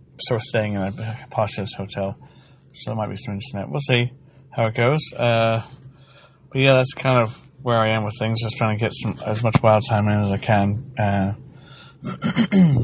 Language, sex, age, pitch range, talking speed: English, male, 20-39, 105-135 Hz, 205 wpm